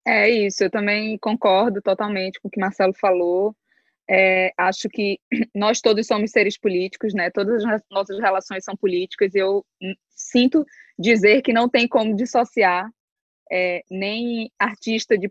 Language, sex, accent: Portuguese, female, Brazilian